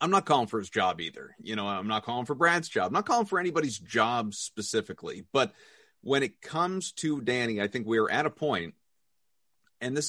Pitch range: 115-165 Hz